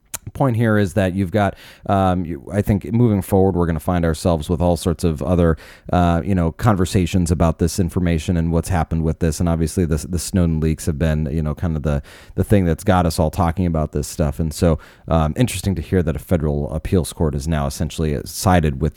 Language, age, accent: English, 30-49, American